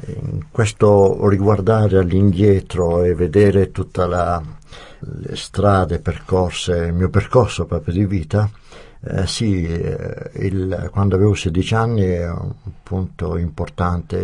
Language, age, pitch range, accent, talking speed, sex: Italian, 60-79, 90-110 Hz, native, 120 wpm, male